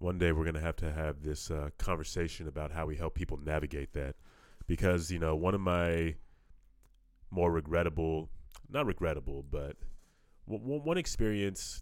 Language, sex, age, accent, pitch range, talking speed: English, male, 30-49, American, 80-90 Hz, 155 wpm